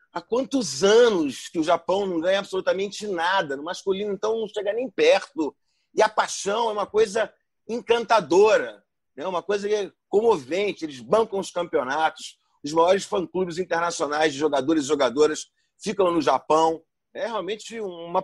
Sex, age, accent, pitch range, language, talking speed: male, 40-59, Brazilian, 160-220 Hz, Portuguese, 150 wpm